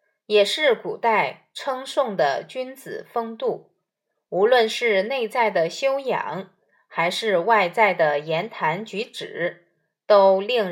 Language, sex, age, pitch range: Chinese, female, 20-39, 190-275 Hz